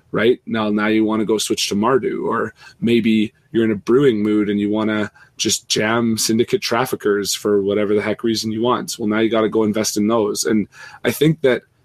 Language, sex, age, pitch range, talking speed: English, male, 20-39, 105-120 Hz, 230 wpm